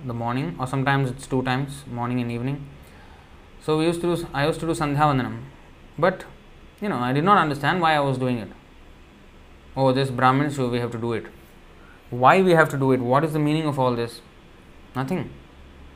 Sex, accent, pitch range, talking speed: male, Indian, 85-145 Hz, 210 wpm